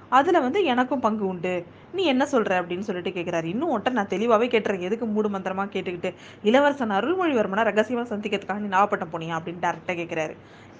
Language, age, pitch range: Tamil, 20-39, 180-225 Hz